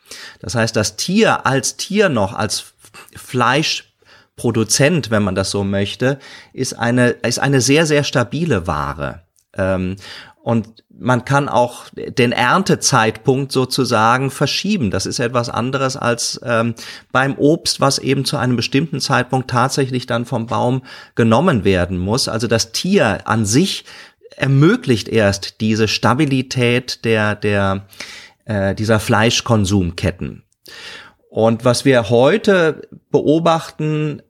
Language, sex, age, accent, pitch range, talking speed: German, male, 30-49, German, 110-135 Hz, 120 wpm